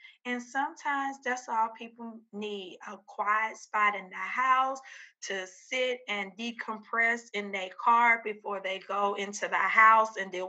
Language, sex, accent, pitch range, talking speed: English, female, American, 195-235 Hz, 155 wpm